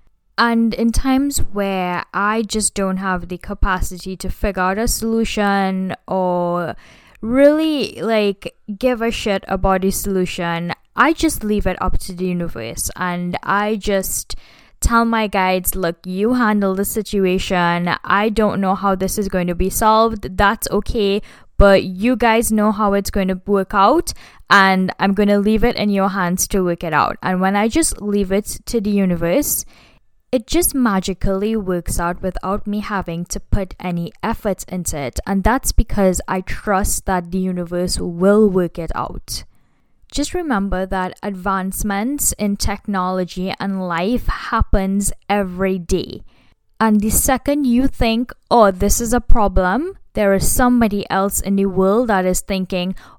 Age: 10-29